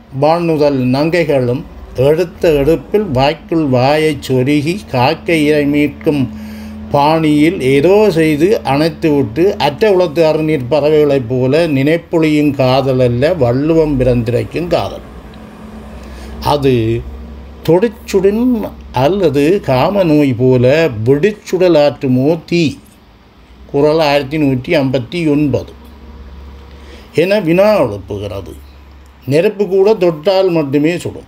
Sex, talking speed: male, 80 wpm